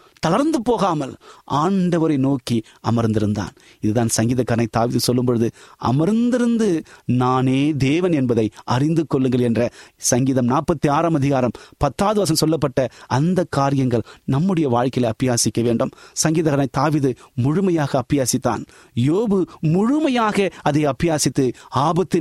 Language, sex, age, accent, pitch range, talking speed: Tamil, male, 30-49, native, 125-180 Hz, 105 wpm